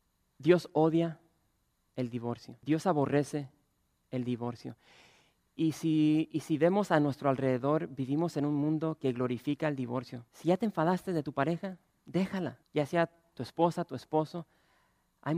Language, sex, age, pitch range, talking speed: English, male, 40-59, 130-165 Hz, 150 wpm